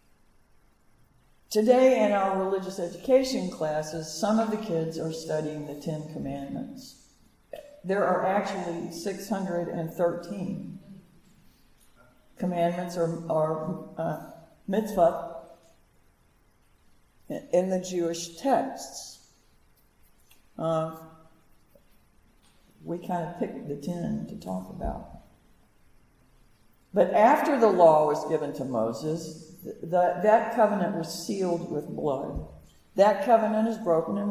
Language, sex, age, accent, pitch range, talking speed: English, female, 60-79, American, 165-210 Hz, 100 wpm